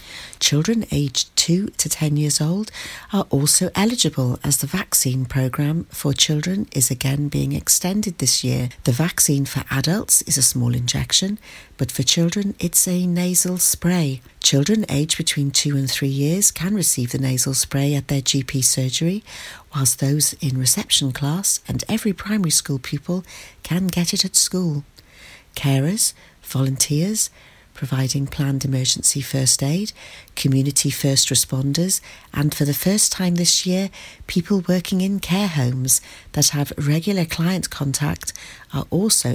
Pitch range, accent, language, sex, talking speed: 135-180 Hz, British, English, female, 150 wpm